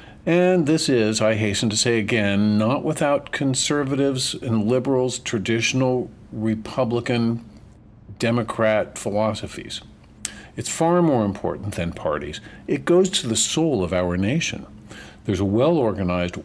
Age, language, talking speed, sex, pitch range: 50-69, English, 120 wpm, male, 105-140 Hz